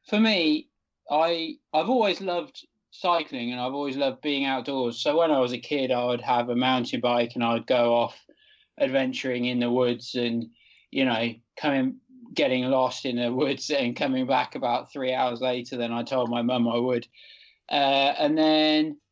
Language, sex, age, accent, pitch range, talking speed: English, male, 20-39, British, 120-165 Hz, 185 wpm